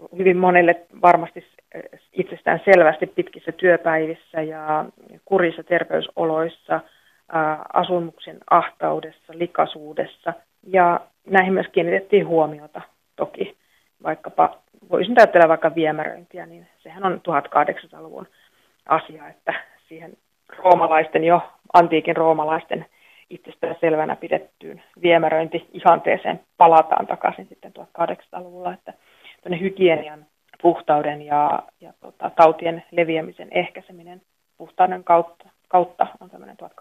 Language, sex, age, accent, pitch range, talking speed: Finnish, female, 30-49, native, 160-180 Hz, 90 wpm